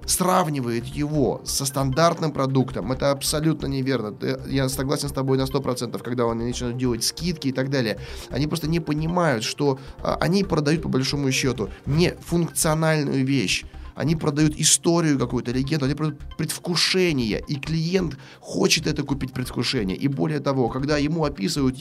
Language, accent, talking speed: Russian, native, 150 wpm